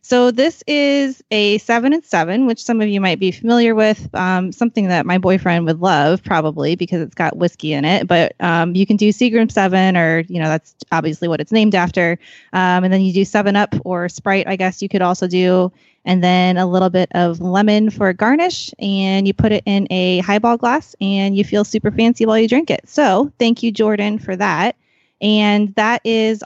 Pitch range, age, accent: 175-215 Hz, 20-39, American